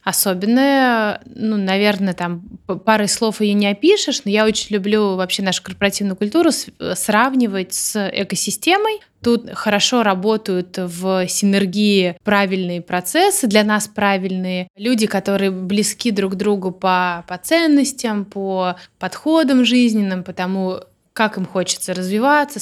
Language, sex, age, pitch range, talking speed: Russian, female, 20-39, 180-220 Hz, 125 wpm